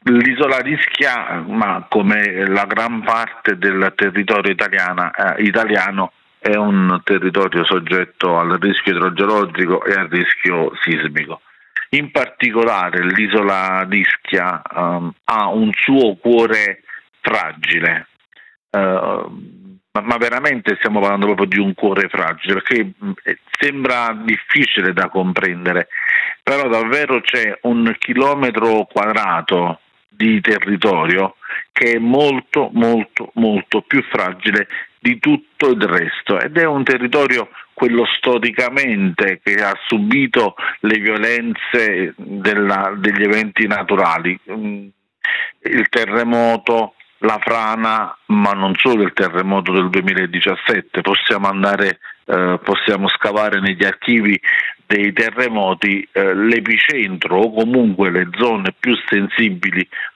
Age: 50-69